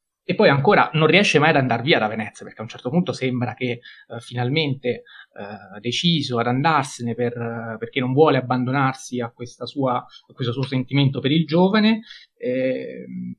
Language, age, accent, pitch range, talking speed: Italian, 30-49, native, 125-155 Hz, 185 wpm